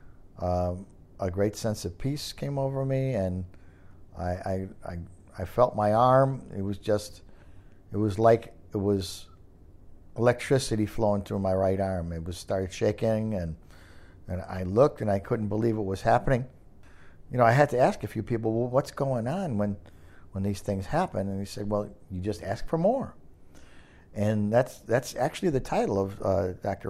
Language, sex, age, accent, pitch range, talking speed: English, male, 50-69, American, 90-125 Hz, 185 wpm